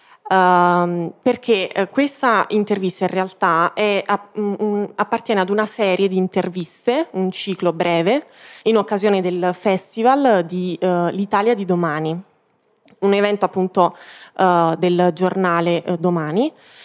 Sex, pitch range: female, 185-215 Hz